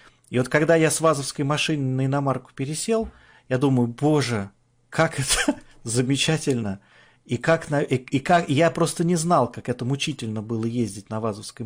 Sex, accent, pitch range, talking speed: male, native, 115-140 Hz, 175 wpm